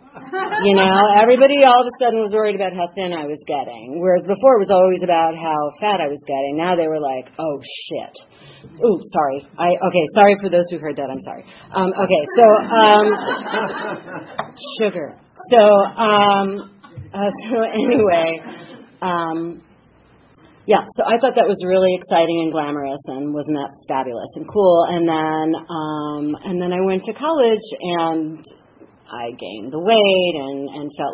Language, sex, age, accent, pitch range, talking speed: English, female, 40-59, American, 155-210 Hz, 170 wpm